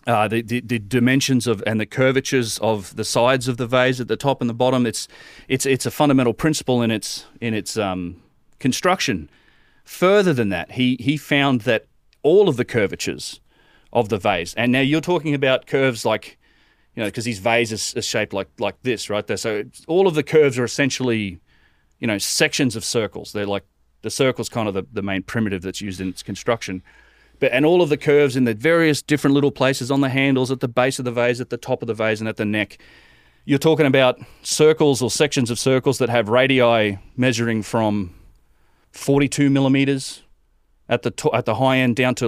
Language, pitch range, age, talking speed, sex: English, 110-135 Hz, 30-49, 210 wpm, male